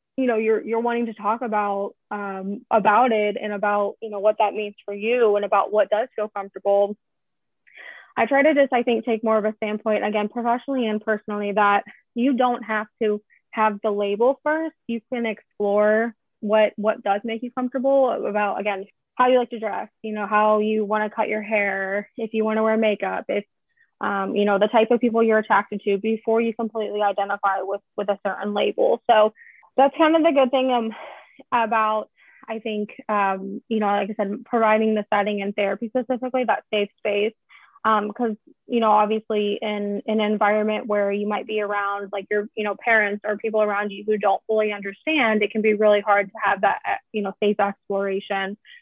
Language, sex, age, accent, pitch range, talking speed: English, female, 20-39, American, 205-230 Hz, 205 wpm